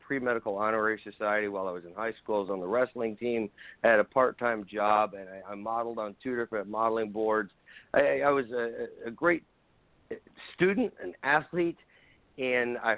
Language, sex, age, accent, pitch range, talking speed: English, male, 50-69, American, 110-135 Hz, 185 wpm